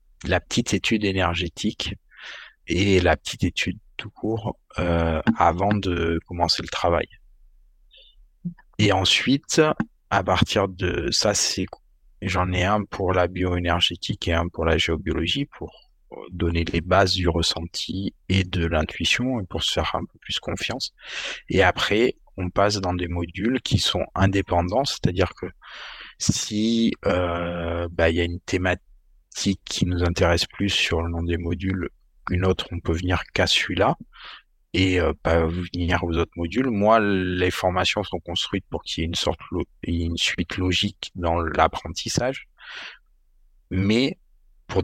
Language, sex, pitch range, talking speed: French, male, 85-95 Hz, 150 wpm